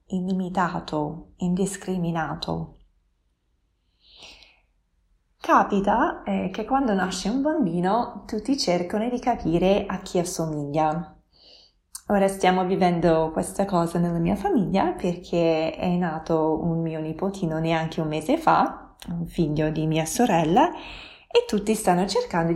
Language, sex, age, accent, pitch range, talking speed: Italian, female, 20-39, native, 160-205 Hz, 115 wpm